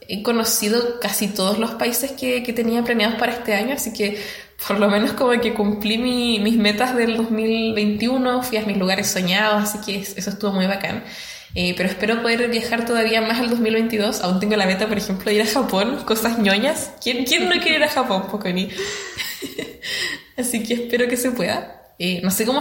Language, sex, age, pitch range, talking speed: Spanish, female, 10-29, 205-255 Hz, 200 wpm